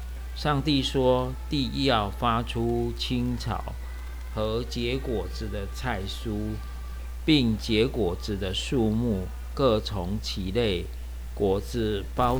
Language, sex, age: Chinese, male, 50-69